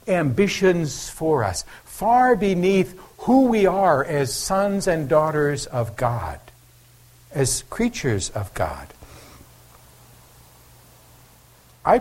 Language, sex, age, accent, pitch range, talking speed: English, male, 60-79, American, 130-185 Hz, 95 wpm